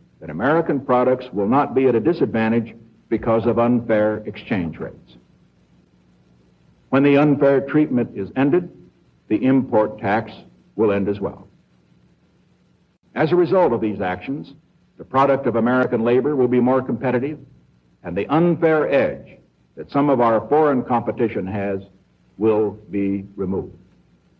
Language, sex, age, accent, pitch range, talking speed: English, male, 60-79, American, 100-140 Hz, 140 wpm